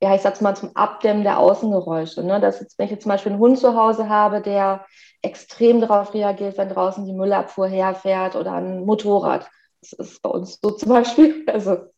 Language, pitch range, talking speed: German, 185-215 Hz, 205 wpm